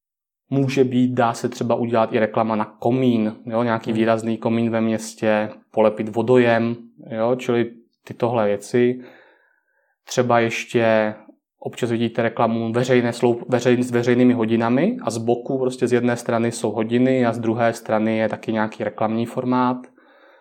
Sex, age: male, 20-39